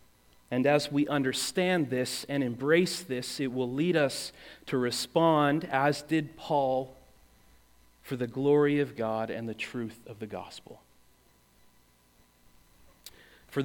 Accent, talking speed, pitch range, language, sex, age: American, 130 wpm, 110-150 Hz, English, male, 30-49